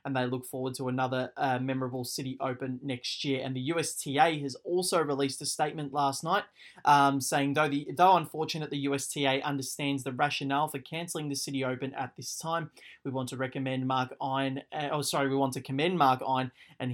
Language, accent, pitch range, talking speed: English, Australian, 130-155 Hz, 200 wpm